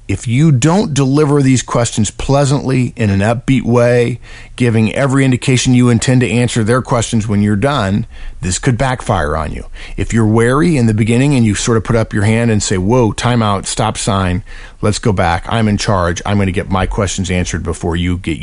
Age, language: 50-69, English